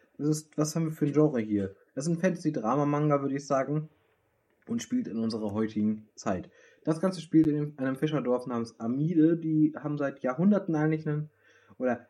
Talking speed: 185 wpm